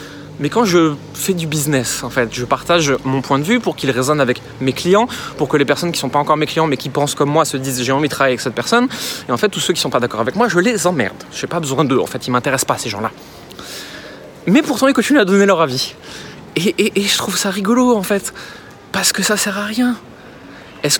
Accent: French